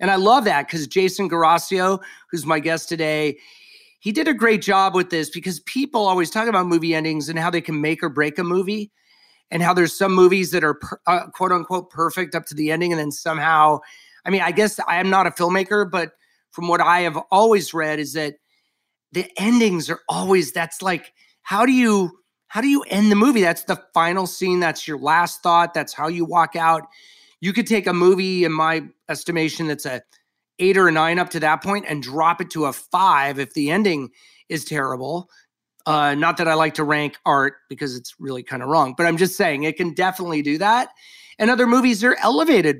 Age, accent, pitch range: 30-49, American, 160-195 Hz